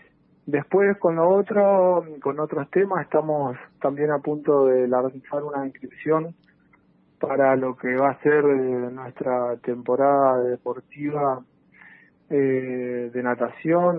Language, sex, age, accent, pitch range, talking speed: Spanish, male, 40-59, Argentinian, 125-145 Hz, 115 wpm